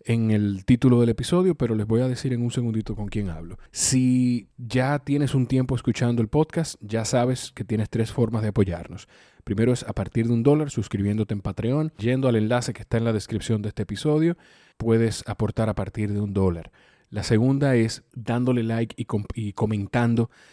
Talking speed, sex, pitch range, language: 200 wpm, male, 105-125 Hz, Spanish